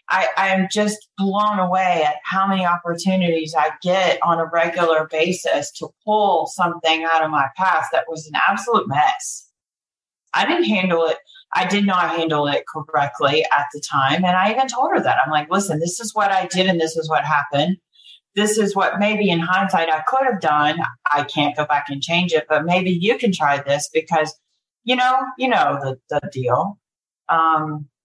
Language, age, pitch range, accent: English, 40-59, 150-190 Hz, American